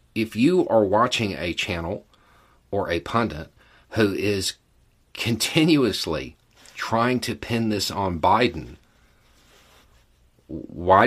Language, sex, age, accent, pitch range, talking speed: English, male, 40-59, American, 75-110 Hz, 105 wpm